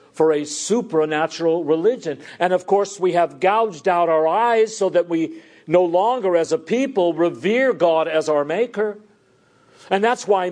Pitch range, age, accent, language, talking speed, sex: 155-210 Hz, 50-69, American, English, 165 wpm, male